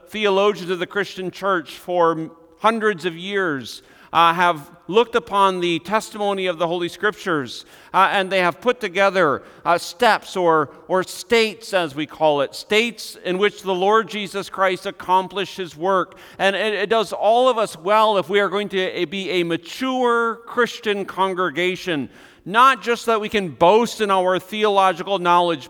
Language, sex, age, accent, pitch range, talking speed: English, male, 50-69, American, 175-210 Hz, 170 wpm